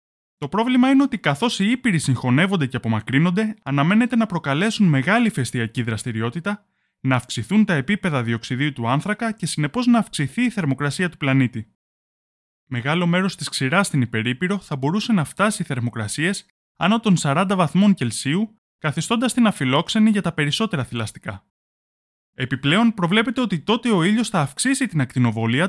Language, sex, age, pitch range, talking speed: Greek, male, 20-39, 125-205 Hz, 150 wpm